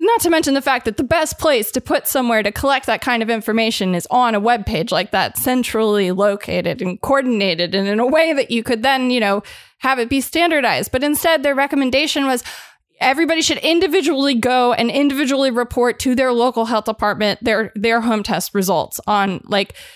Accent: American